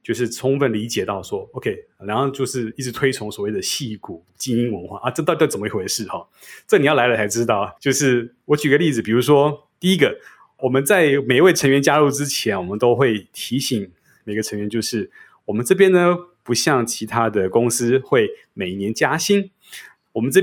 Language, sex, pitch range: Chinese, male, 110-150 Hz